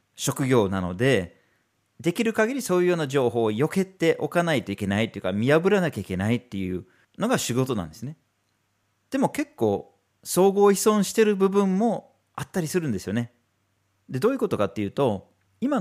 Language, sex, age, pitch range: Japanese, male, 40-59, 105-160 Hz